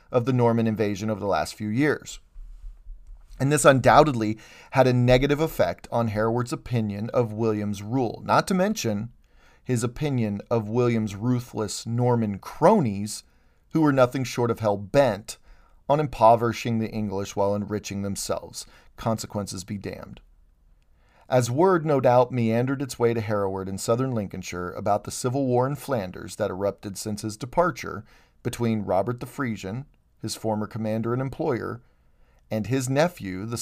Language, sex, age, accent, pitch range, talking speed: English, male, 40-59, American, 105-125 Hz, 150 wpm